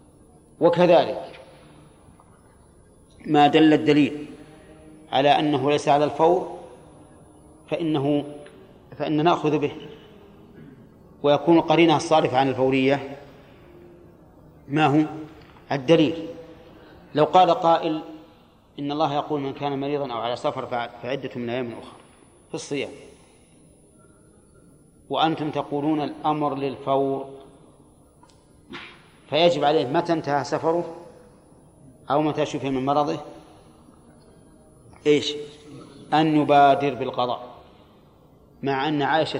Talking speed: 90 wpm